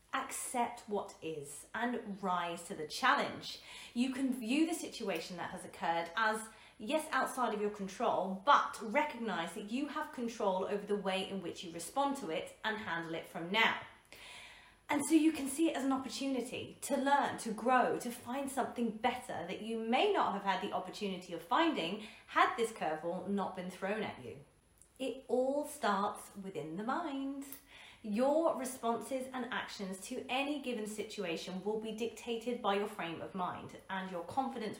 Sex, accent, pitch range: female, British, 200-265 Hz